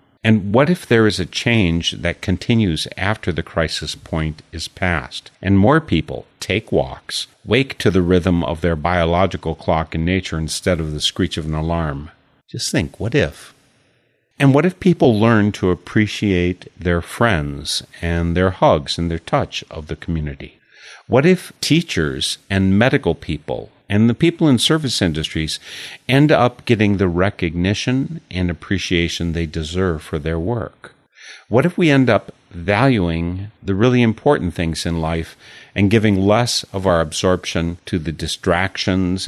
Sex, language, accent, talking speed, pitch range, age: male, English, American, 160 wpm, 85-110 Hz, 50-69